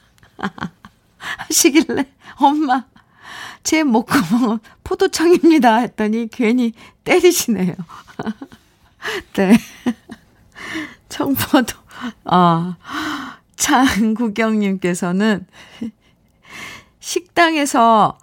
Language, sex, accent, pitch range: Korean, female, native, 180-250 Hz